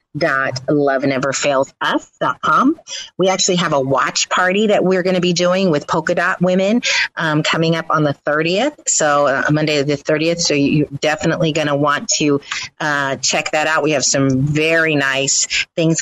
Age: 30-49